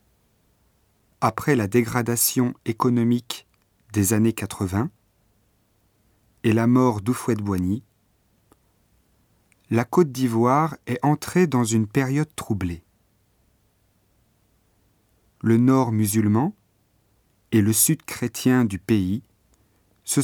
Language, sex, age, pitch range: Japanese, male, 40-59, 105-130 Hz